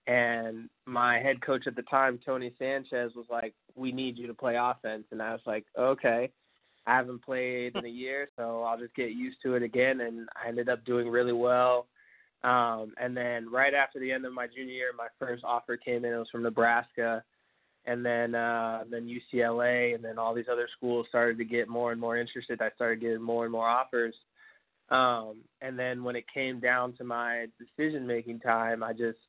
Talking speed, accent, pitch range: 205 wpm, American, 120-130 Hz